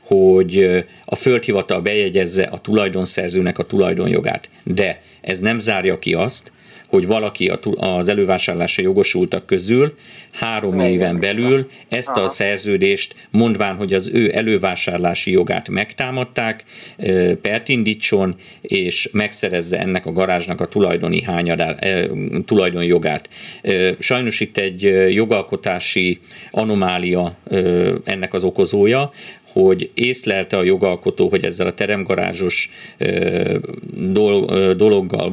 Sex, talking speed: male, 100 wpm